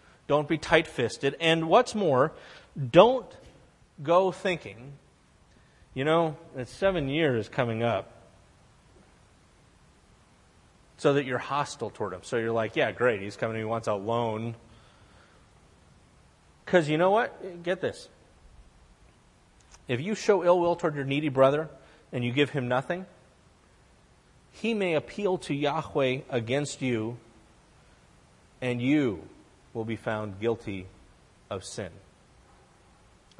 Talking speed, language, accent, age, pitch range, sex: 125 wpm, English, American, 30-49, 115-170 Hz, male